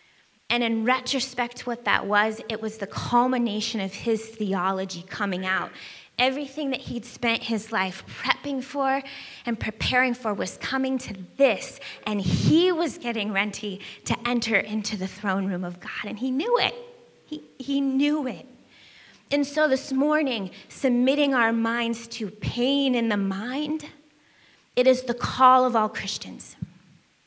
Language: English